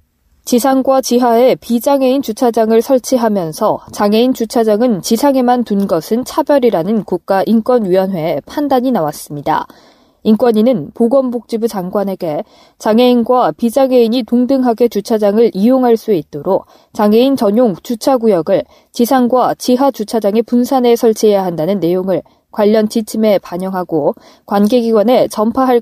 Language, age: Korean, 20-39